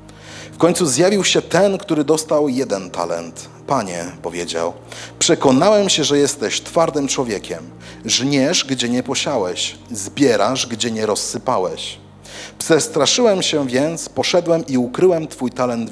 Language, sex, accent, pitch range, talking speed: Polish, male, native, 125-170 Hz, 125 wpm